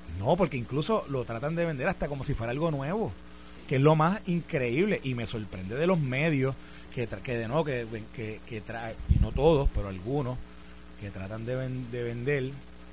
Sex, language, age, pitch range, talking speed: male, Spanish, 30-49, 100-155 Hz, 205 wpm